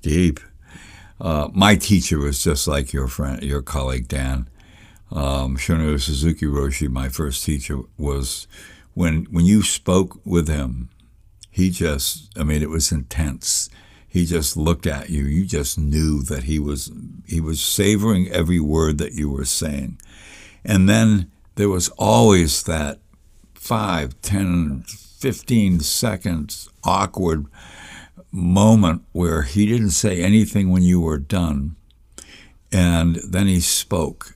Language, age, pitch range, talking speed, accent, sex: English, 60-79, 75-100 Hz, 135 wpm, American, male